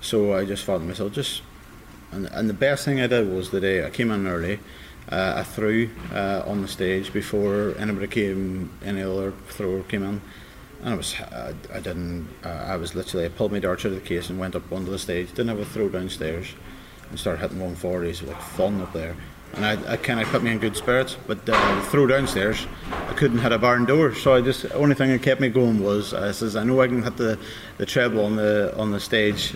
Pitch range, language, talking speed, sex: 95-110 Hz, English, 240 wpm, male